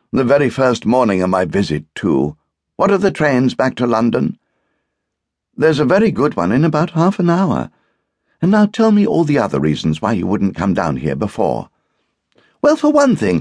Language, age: English, 60-79